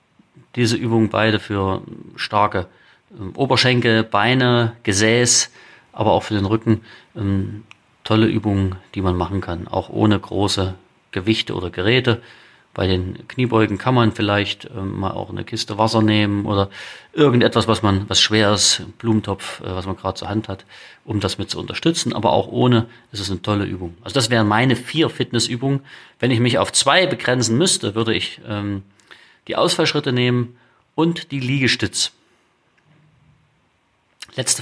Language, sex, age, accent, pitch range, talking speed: German, male, 30-49, German, 100-120 Hz, 160 wpm